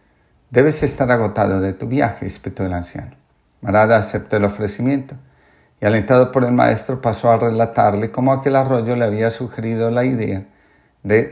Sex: male